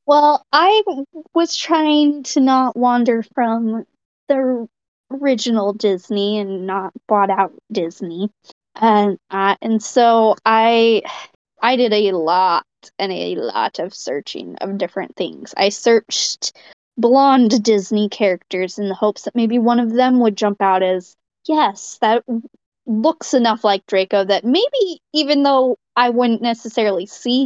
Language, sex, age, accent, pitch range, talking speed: English, female, 20-39, American, 210-265 Hz, 140 wpm